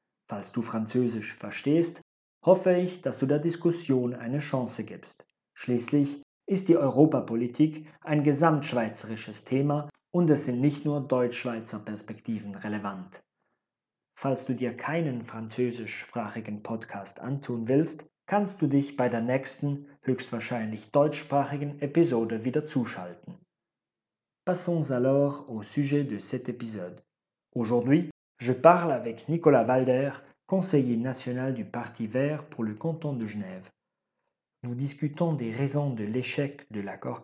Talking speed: 125 wpm